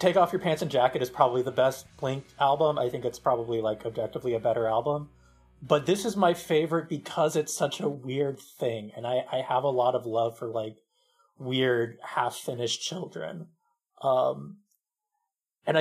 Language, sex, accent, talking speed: English, male, American, 180 wpm